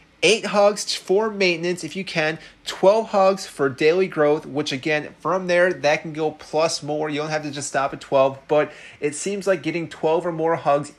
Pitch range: 135-165 Hz